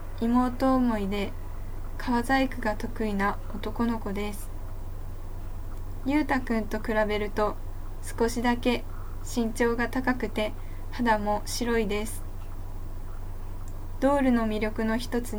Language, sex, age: Japanese, female, 20-39